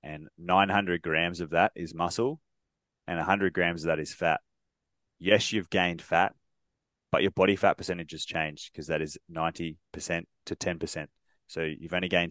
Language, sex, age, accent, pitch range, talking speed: English, male, 20-39, Australian, 80-95 Hz, 170 wpm